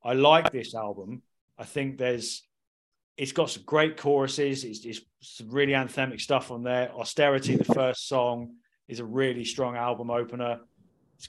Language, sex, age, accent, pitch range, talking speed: English, male, 30-49, British, 120-140 Hz, 160 wpm